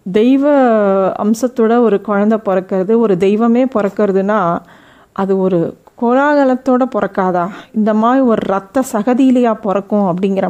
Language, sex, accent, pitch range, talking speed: Tamil, female, native, 200-245 Hz, 110 wpm